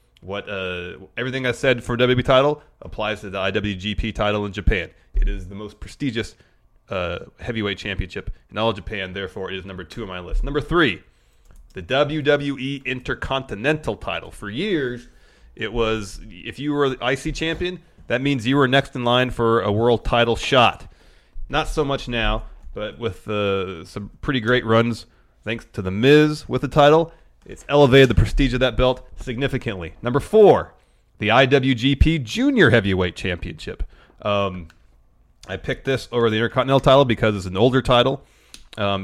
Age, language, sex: 30-49, English, male